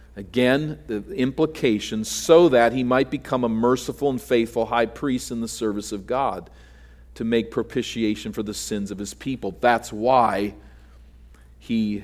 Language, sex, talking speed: English, male, 155 wpm